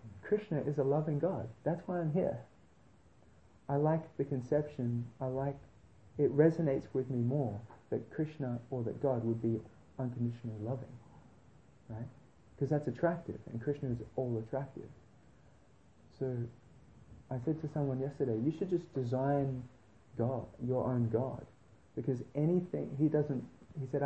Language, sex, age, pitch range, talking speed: English, male, 30-49, 115-150 Hz, 145 wpm